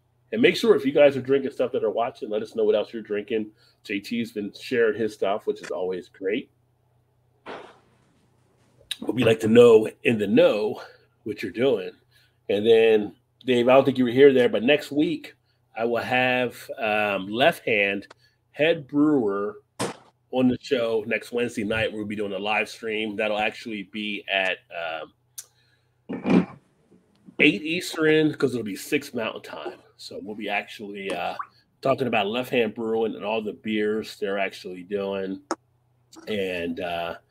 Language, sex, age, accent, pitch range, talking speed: English, male, 30-49, American, 110-145 Hz, 160 wpm